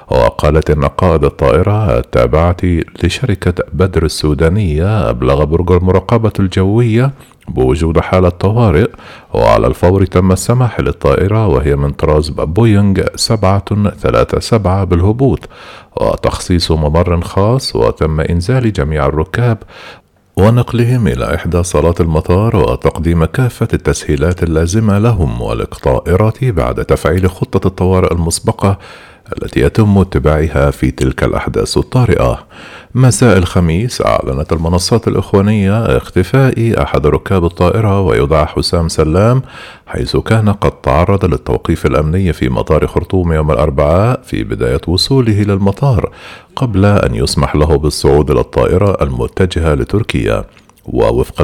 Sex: male